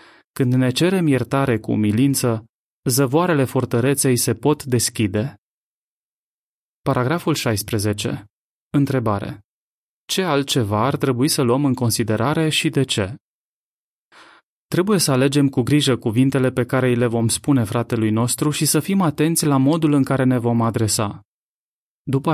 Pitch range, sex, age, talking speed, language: 115-145 Hz, male, 20-39, 135 wpm, Romanian